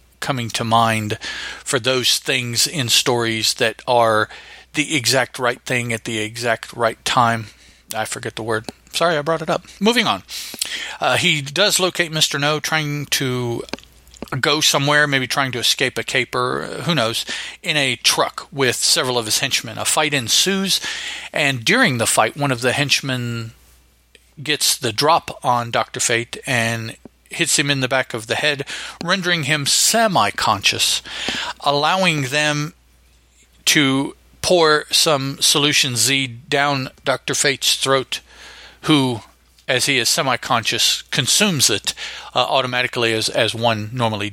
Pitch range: 115-150 Hz